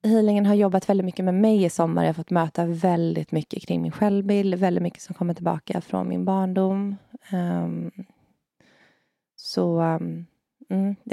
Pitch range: 165-205 Hz